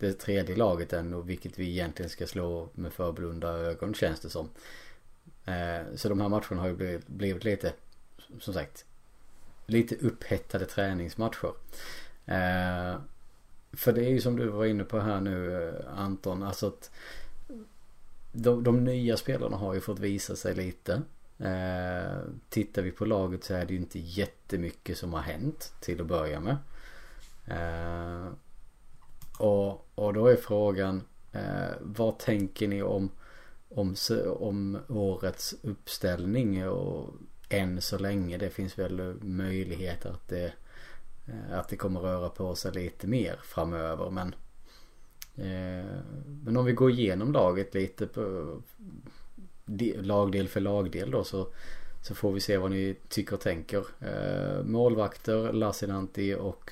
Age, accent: 30-49, Norwegian